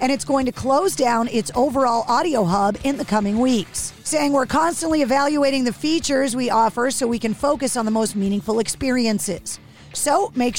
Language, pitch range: English, 225-290 Hz